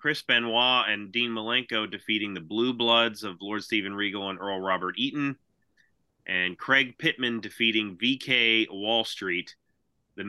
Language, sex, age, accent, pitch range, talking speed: English, male, 30-49, American, 115-140 Hz, 145 wpm